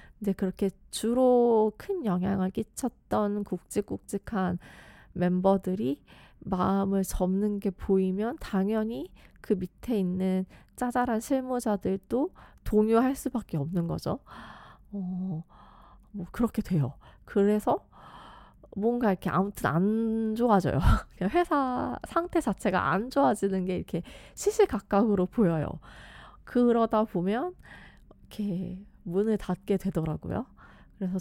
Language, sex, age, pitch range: Korean, female, 20-39, 180-225 Hz